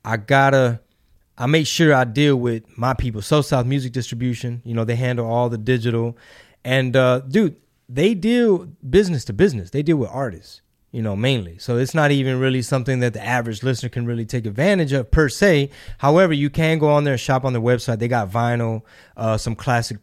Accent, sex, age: American, male, 20-39